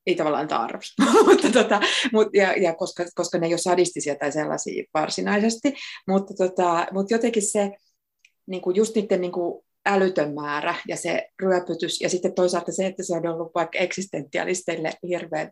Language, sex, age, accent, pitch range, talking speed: Finnish, female, 30-49, native, 170-195 Hz, 165 wpm